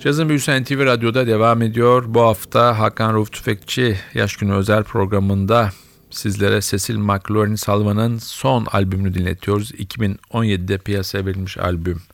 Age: 50-69